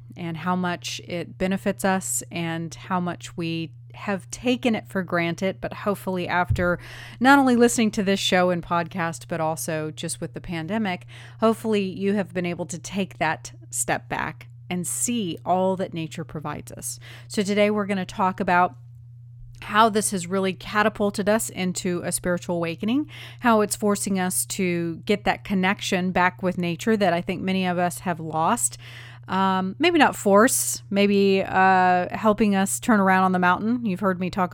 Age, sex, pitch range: 30-49, female, 165-200 Hz